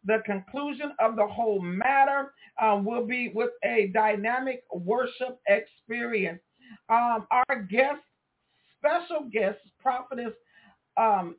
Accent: American